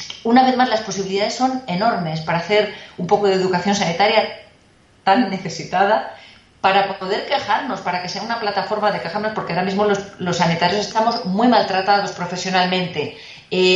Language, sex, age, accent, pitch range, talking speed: Spanish, female, 30-49, Spanish, 185-225 Hz, 160 wpm